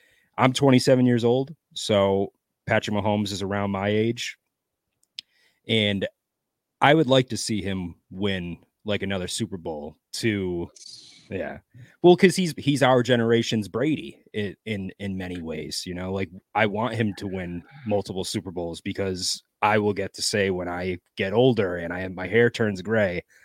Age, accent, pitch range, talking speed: 30-49, American, 95-120 Hz, 160 wpm